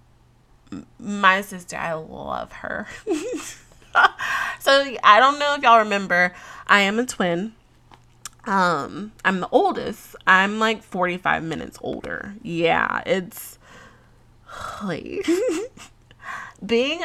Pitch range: 180-250 Hz